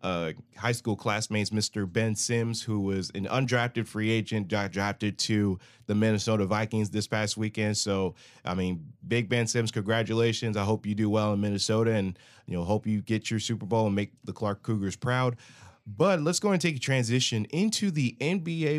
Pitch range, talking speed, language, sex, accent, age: 100-125 Hz, 190 wpm, English, male, American, 20-39